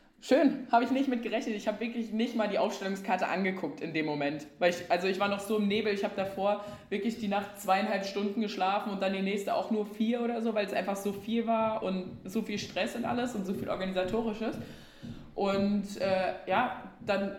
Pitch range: 185-220 Hz